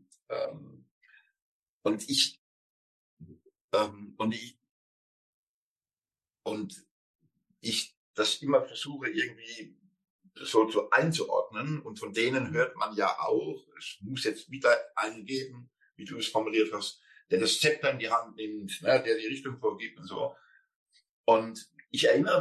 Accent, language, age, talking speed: German, German, 60-79, 130 wpm